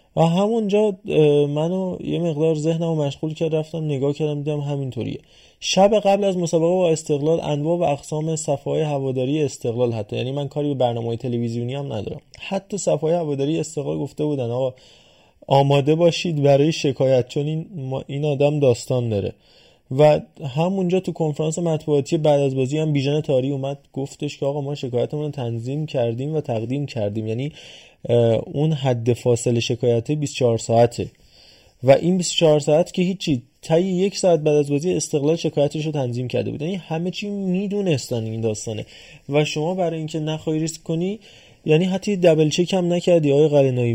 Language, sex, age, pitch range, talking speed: Persian, male, 20-39, 125-165 Hz, 155 wpm